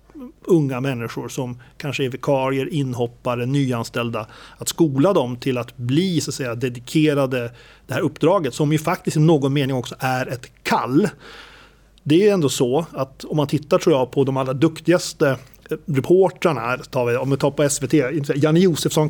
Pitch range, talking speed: 135-160 Hz, 175 wpm